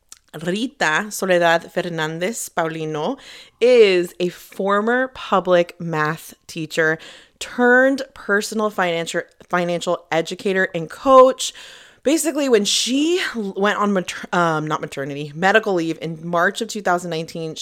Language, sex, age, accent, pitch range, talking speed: English, female, 20-39, American, 160-205 Hz, 110 wpm